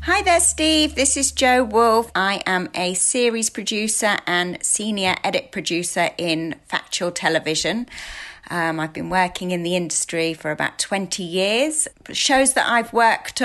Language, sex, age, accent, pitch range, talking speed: English, female, 30-49, British, 165-220 Hz, 150 wpm